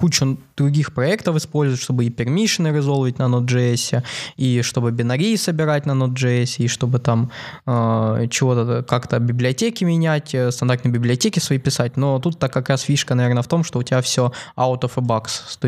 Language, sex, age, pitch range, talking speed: Russian, male, 20-39, 125-150 Hz, 170 wpm